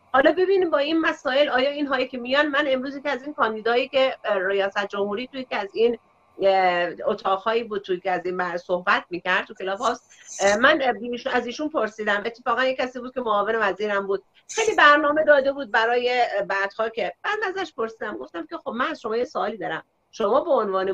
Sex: female